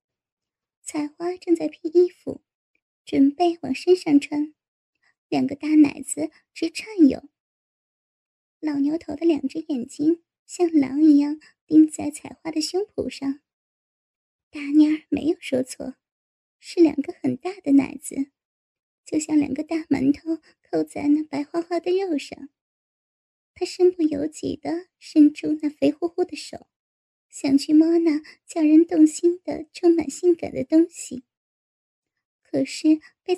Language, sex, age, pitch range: Chinese, male, 10-29, 285-340 Hz